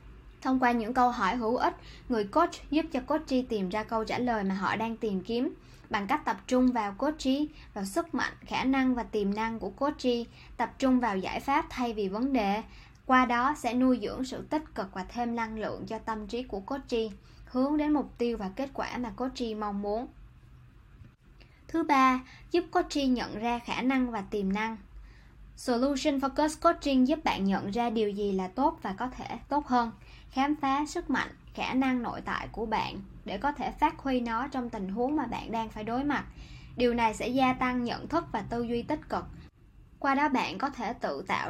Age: 10-29